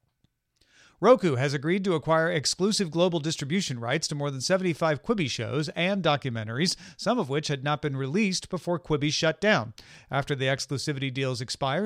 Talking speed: 165 wpm